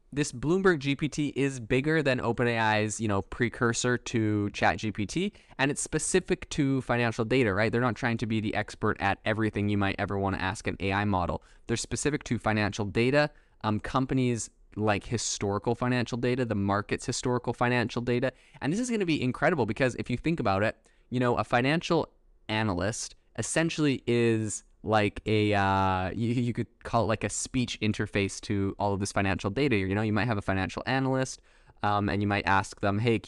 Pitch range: 100-125 Hz